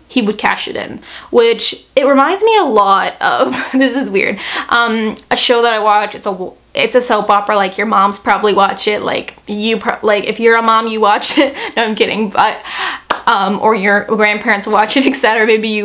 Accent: American